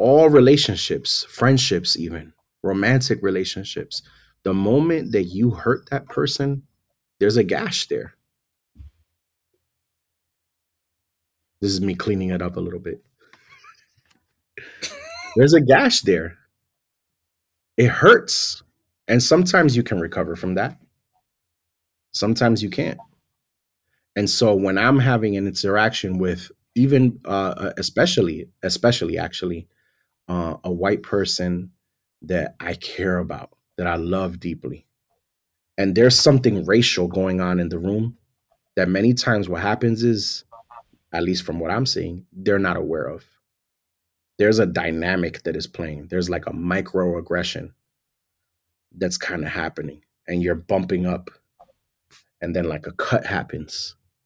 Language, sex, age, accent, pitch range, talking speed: English, male, 30-49, American, 85-115 Hz, 130 wpm